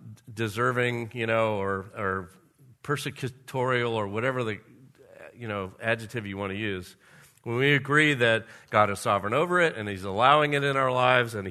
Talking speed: 170 wpm